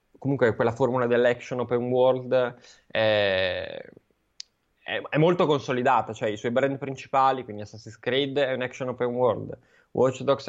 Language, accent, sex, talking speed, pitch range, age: Italian, native, male, 150 wpm, 115-130 Hz, 20-39